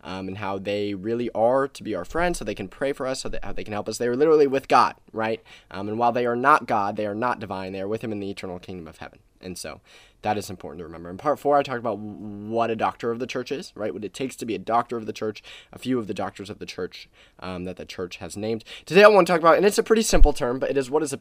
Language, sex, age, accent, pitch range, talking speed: English, male, 20-39, American, 100-130 Hz, 320 wpm